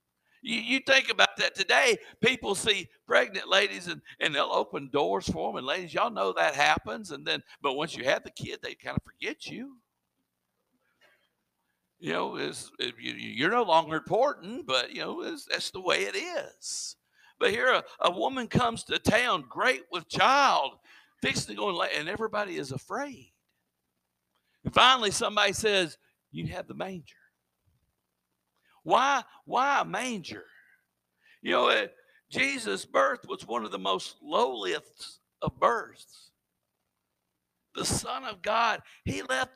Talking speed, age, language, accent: 150 wpm, 60-79, English, American